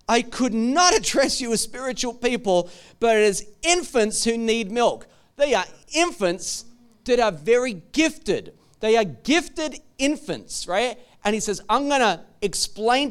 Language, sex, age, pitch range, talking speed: English, male, 30-49, 170-245 Hz, 150 wpm